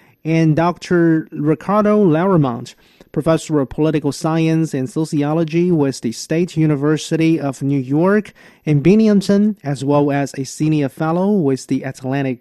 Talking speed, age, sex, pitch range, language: 135 wpm, 30-49, male, 135-160 Hz, English